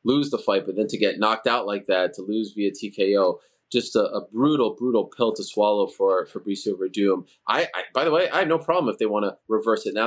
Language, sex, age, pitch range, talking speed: English, male, 20-39, 110-135 Hz, 250 wpm